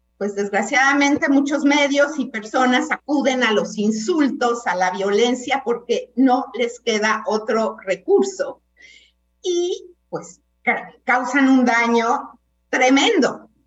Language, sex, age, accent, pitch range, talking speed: Spanish, female, 50-69, Mexican, 200-285 Hz, 110 wpm